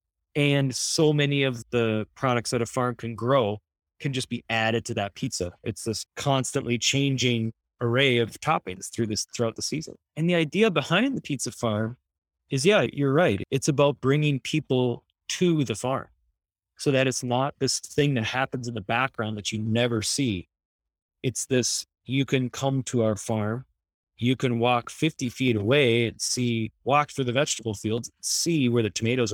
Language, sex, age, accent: English, male, 20-39, American